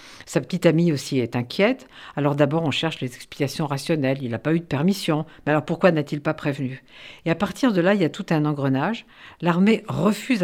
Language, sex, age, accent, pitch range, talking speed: French, female, 50-69, French, 145-190 Hz, 220 wpm